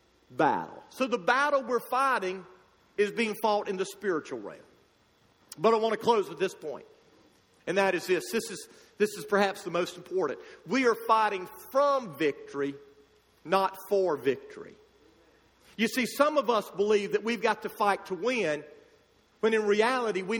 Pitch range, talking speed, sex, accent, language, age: 210-280 Hz, 170 wpm, male, American, English, 50-69